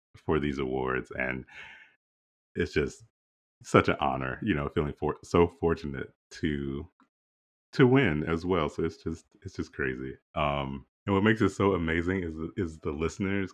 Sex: male